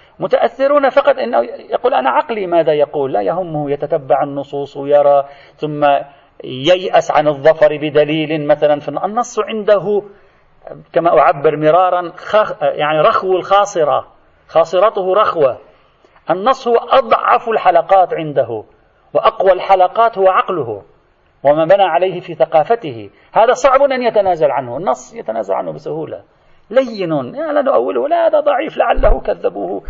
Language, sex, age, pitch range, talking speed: Arabic, male, 40-59, 145-215 Hz, 120 wpm